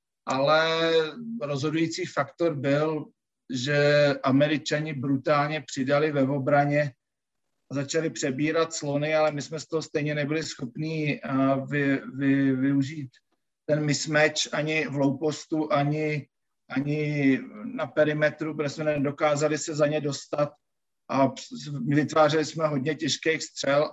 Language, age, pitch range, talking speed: Slovak, 50-69, 140-155 Hz, 115 wpm